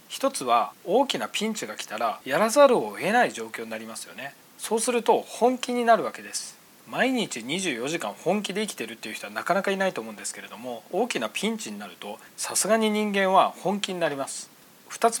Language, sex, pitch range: Japanese, male, 145-230 Hz